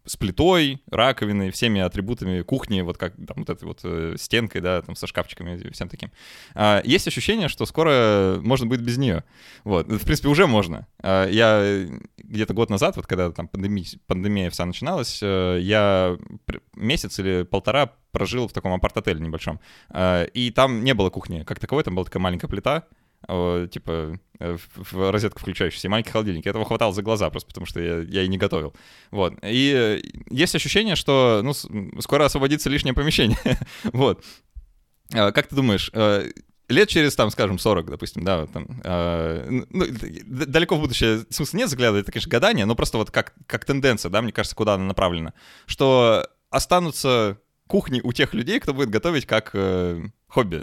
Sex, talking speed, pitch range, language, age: male, 175 wpm, 95-125 Hz, Russian, 20-39